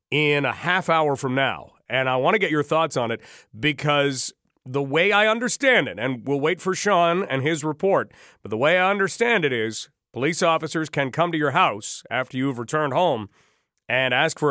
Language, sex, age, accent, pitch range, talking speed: English, male, 40-59, American, 145-190 Hz, 205 wpm